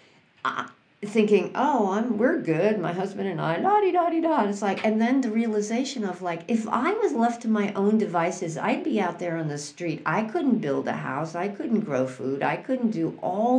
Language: English